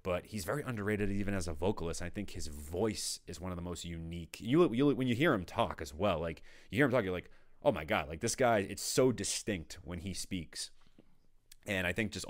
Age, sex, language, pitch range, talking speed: 30-49, male, English, 80-95 Hz, 250 wpm